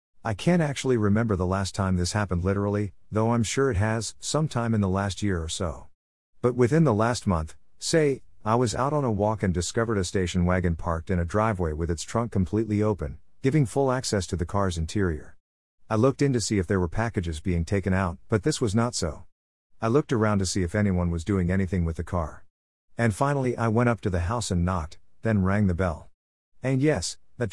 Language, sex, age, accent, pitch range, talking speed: English, male, 50-69, American, 90-120 Hz, 220 wpm